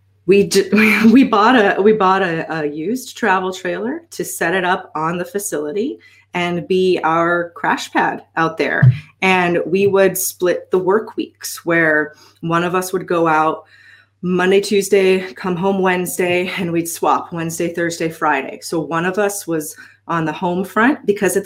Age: 30-49